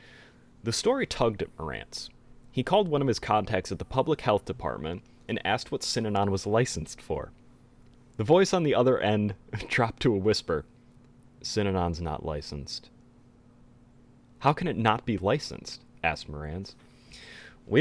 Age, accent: 30-49, American